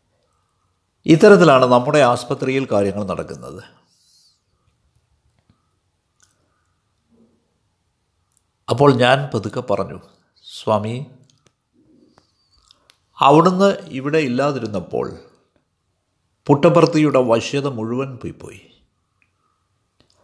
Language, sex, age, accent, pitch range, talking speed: Malayalam, male, 60-79, native, 95-155 Hz, 50 wpm